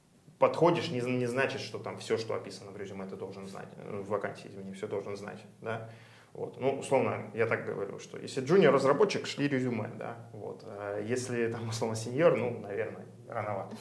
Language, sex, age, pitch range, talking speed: Russian, male, 20-39, 100-125 Hz, 185 wpm